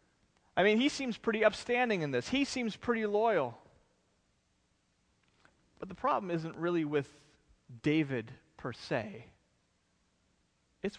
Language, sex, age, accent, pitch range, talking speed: English, male, 30-49, American, 150-205 Hz, 120 wpm